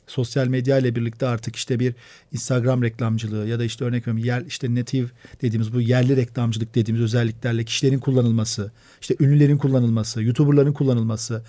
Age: 40-59